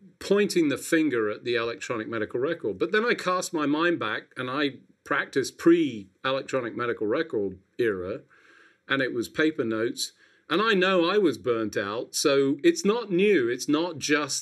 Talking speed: 170 wpm